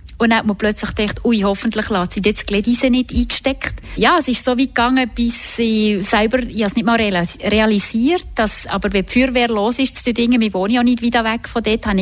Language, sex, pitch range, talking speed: German, female, 200-235 Hz, 235 wpm